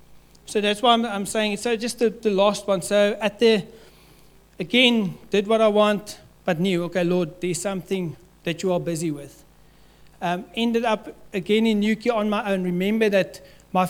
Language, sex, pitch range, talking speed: English, male, 165-210 Hz, 180 wpm